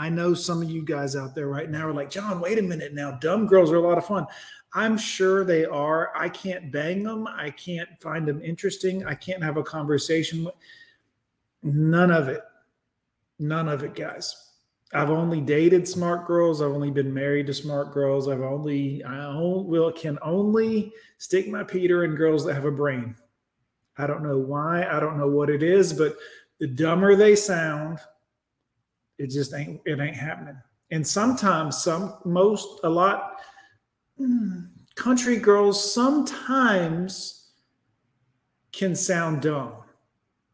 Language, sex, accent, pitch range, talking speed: English, male, American, 145-185 Hz, 165 wpm